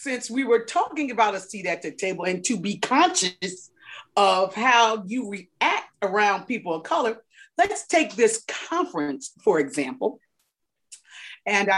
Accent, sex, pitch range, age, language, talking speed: American, female, 190-265 Hz, 40-59, English, 150 wpm